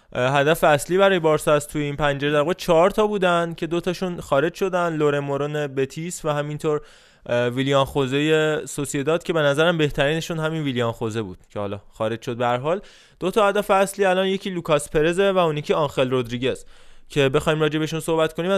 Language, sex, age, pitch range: Persian, male, 20-39, 140-170 Hz